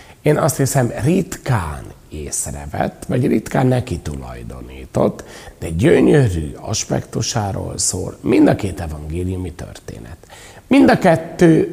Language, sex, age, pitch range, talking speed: Hungarian, male, 60-79, 80-115 Hz, 105 wpm